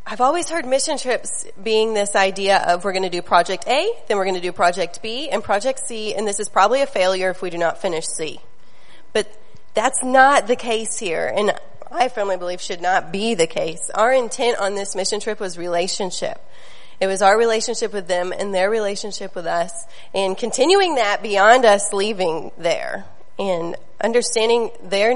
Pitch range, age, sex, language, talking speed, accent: 190-245 Hz, 30-49, female, English, 195 wpm, American